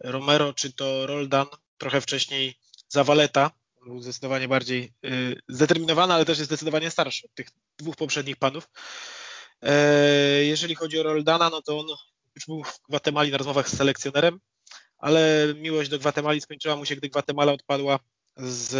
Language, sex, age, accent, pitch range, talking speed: Polish, male, 20-39, native, 135-155 Hz, 150 wpm